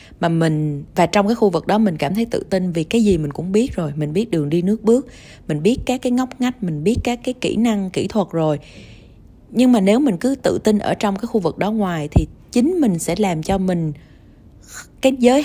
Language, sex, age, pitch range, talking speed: Vietnamese, female, 20-39, 160-210 Hz, 250 wpm